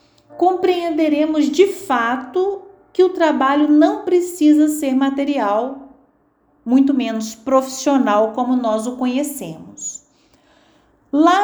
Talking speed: 95 wpm